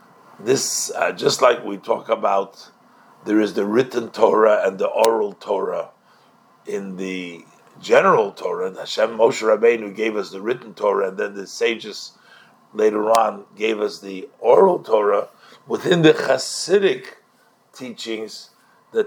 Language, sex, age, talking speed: English, male, 50-69, 140 wpm